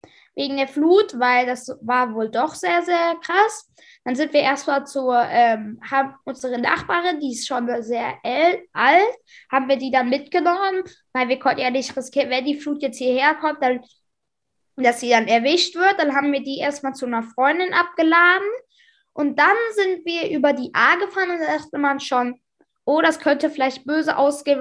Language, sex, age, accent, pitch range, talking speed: German, female, 20-39, German, 260-325 Hz, 185 wpm